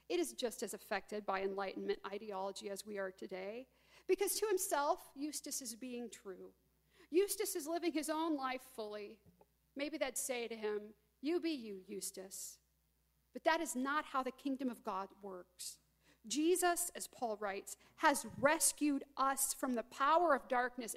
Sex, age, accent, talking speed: female, 50-69, American, 165 wpm